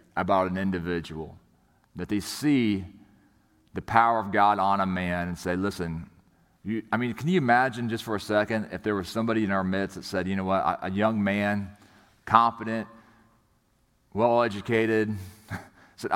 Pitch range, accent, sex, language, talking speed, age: 95-120 Hz, American, male, English, 165 wpm, 40-59